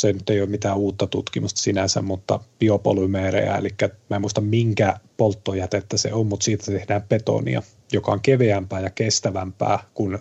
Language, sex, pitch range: Finnish, male, 100-130 Hz